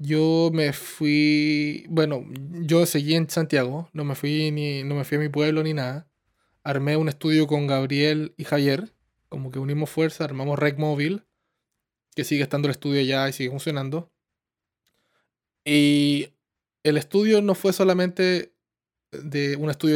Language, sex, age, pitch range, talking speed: Spanish, male, 20-39, 140-185 Hz, 155 wpm